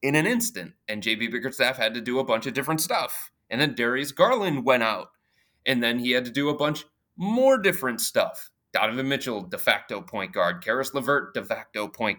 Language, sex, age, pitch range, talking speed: English, male, 30-49, 120-150 Hz, 205 wpm